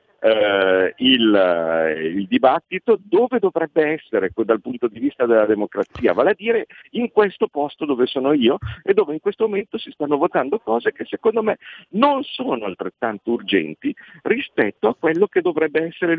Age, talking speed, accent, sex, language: 50-69, 160 wpm, native, male, Italian